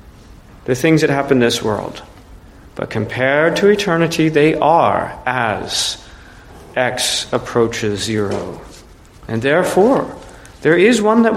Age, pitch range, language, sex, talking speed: 40-59, 120-180 Hz, English, male, 120 wpm